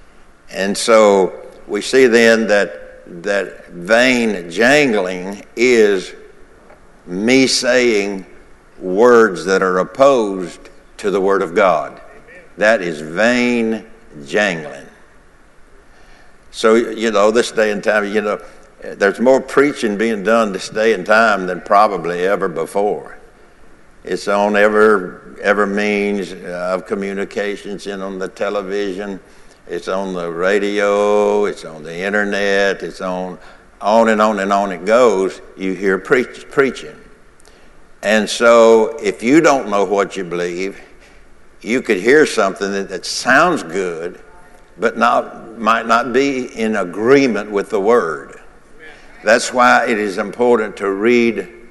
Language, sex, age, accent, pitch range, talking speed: English, male, 60-79, American, 95-115 Hz, 130 wpm